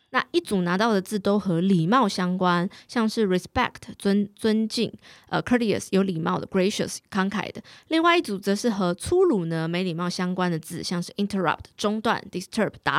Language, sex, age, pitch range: Chinese, female, 20-39, 180-245 Hz